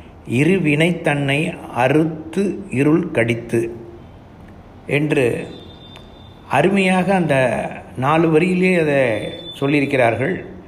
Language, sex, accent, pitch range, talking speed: Tamil, male, native, 125-165 Hz, 75 wpm